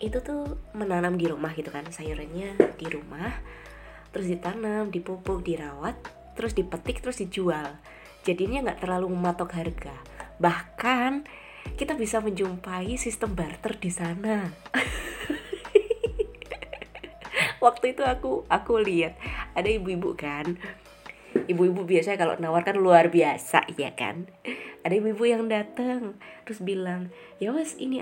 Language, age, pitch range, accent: Indonesian, 20-39, 170-230 Hz, native